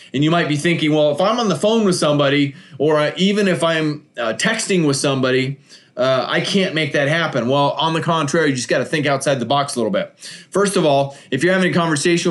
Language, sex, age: English, male, 30-49